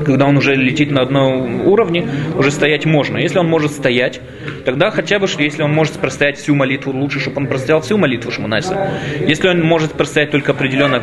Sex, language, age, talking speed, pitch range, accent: male, Russian, 20-39, 195 wpm, 130-165 Hz, native